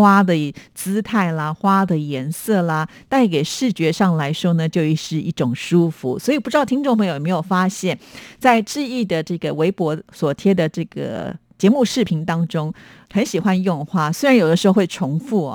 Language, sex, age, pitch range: Chinese, female, 50-69, 155-195 Hz